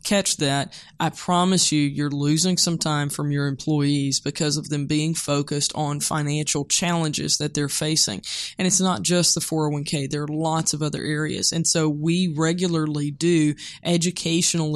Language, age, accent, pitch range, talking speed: English, 20-39, American, 155-175 Hz, 165 wpm